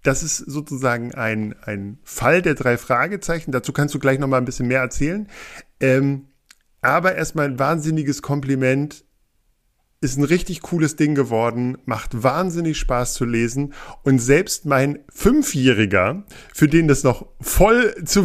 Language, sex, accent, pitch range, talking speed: German, male, German, 125-150 Hz, 150 wpm